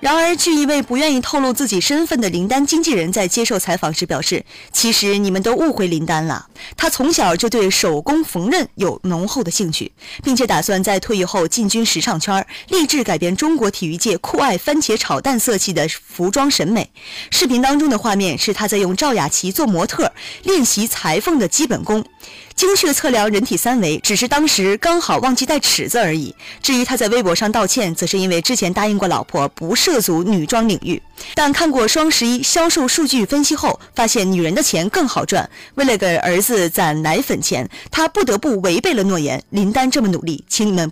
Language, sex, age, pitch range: Chinese, female, 20-39, 180-270 Hz